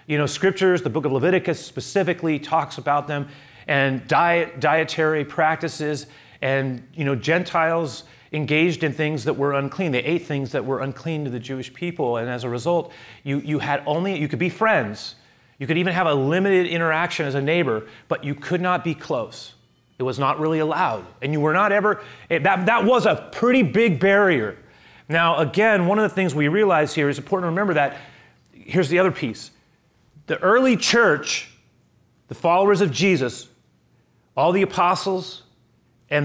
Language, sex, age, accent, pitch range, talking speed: English, male, 30-49, American, 140-190 Hz, 180 wpm